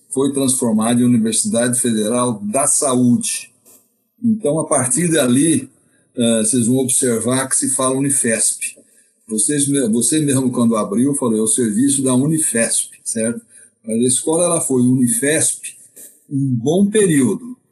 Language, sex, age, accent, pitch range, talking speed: Portuguese, male, 60-79, Brazilian, 120-175 Hz, 130 wpm